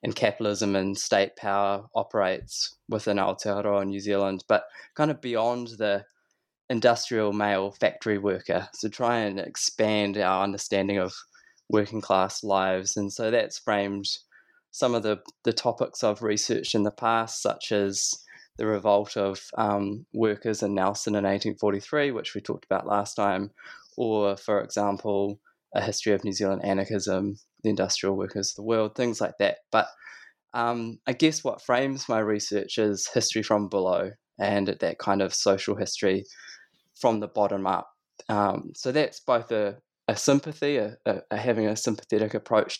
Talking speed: 155 wpm